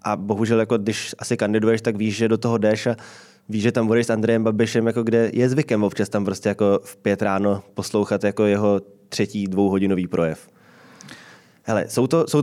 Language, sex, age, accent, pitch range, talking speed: Czech, male, 20-39, native, 100-115 Hz, 195 wpm